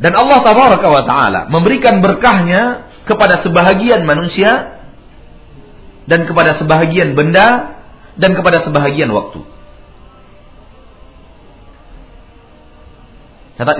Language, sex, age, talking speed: Malay, male, 40-59, 85 wpm